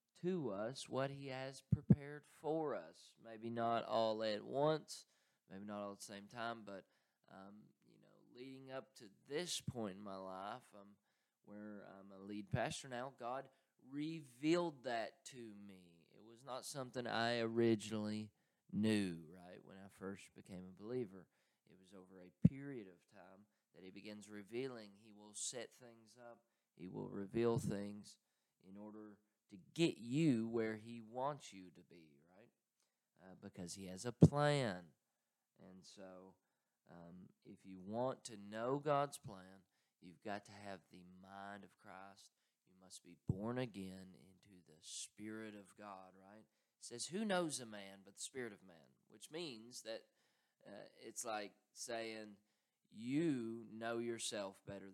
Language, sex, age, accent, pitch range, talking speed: English, male, 20-39, American, 95-125 Hz, 160 wpm